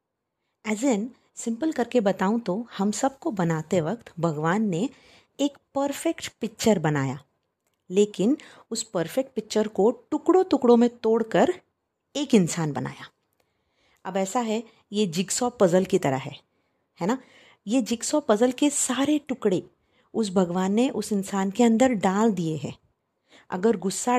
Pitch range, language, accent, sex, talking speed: 185-255 Hz, Hindi, native, female, 140 wpm